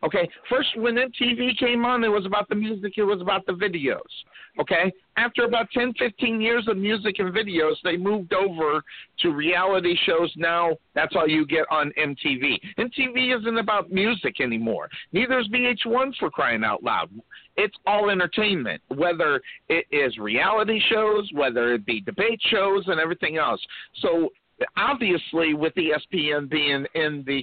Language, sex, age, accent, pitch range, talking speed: English, male, 50-69, American, 160-225 Hz, 160 wpm